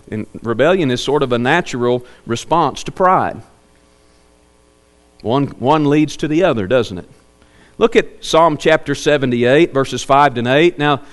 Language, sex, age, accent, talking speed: English, male, 40-59, American, 150 wpm